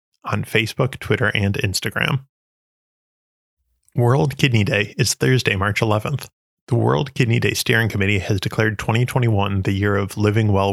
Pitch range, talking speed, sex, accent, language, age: 100-125 Hz, 145 wpm, male, American, English, 20-39